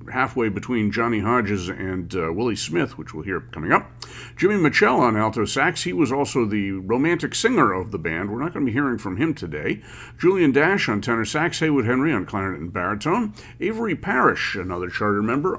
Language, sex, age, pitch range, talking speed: English, male, 50-69, 100-130 Hz, 200 wpm